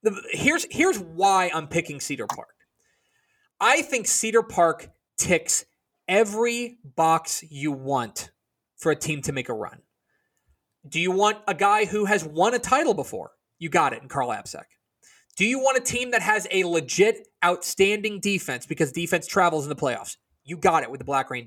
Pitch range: 160-255 Hz